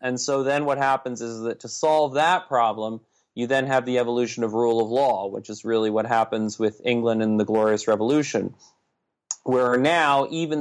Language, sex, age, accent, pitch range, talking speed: English, male, 30-49, American, 110-125 Hz, 190 wpm